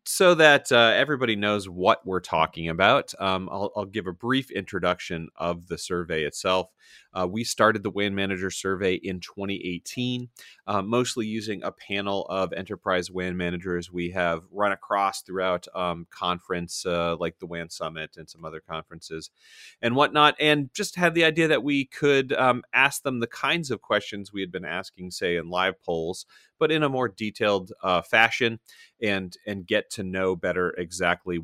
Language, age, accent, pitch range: English, 30-49, American, 90-110 Hz